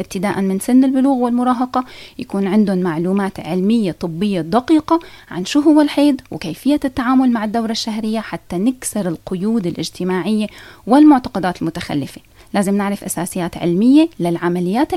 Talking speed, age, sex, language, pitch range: 125 wpm, 30-49, female, Arabic, 185-260 Hz